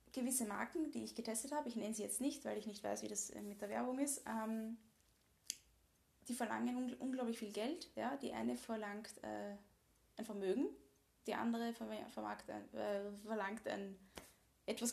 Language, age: German, 20-39